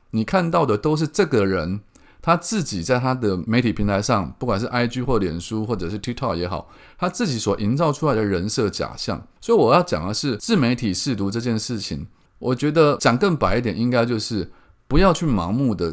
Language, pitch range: Chinese, 100-145 Hz